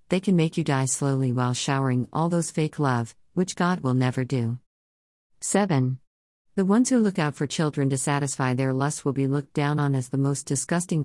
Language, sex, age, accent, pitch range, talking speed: English, female, 50-69, American, 130-165 Hz, 205 wpm